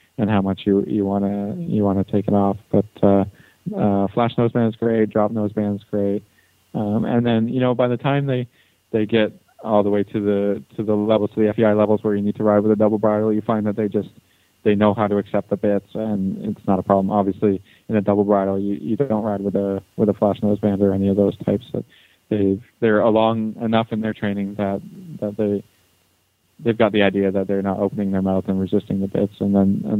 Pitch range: 100-110 Hz